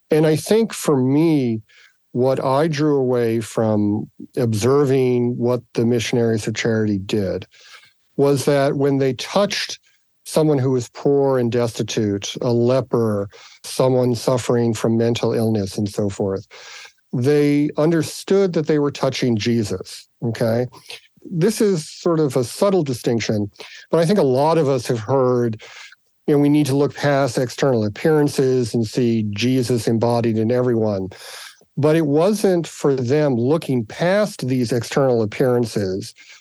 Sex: male